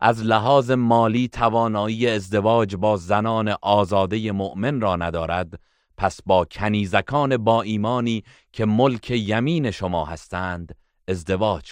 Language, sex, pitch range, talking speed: Persian, male, 90-115 Hz, 115 wpm